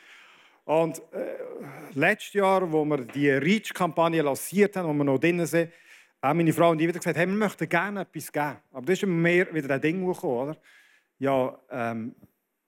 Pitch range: 135-170 Hz